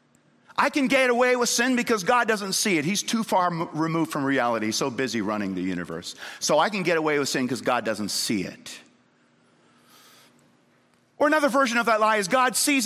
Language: English